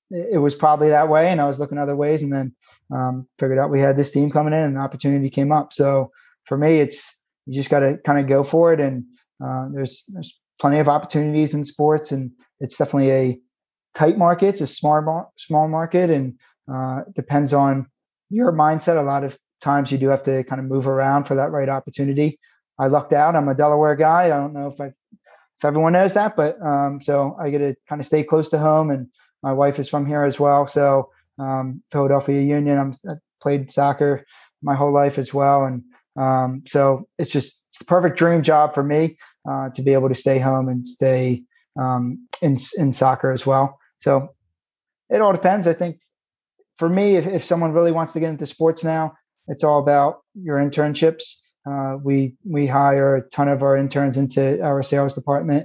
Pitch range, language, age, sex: 135-150 Hz, English, 20-39, male